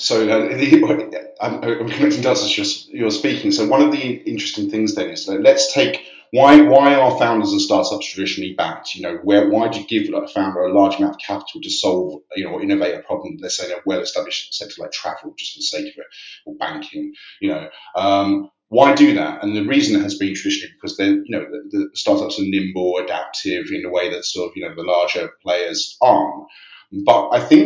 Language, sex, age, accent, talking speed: English, male, 30-49, British, 225 wpm